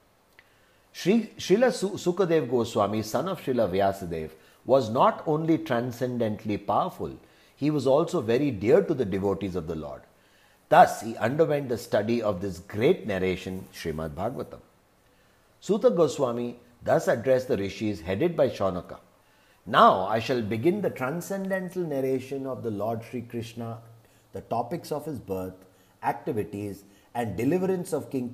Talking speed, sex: 140 wpm, male